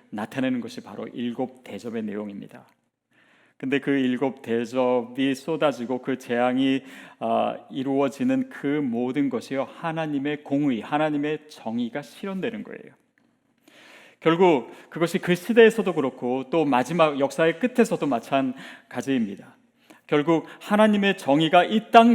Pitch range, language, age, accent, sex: 130-215 Hz, Korean, 40-59, native, male